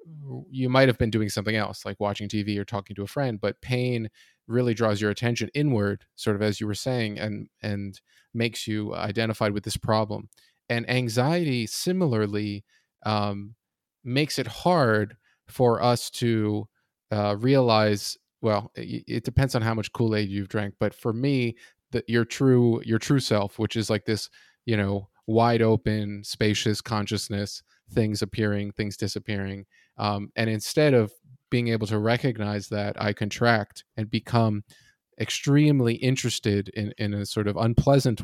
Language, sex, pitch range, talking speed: English, male, 105-120 Hz, 160 wpm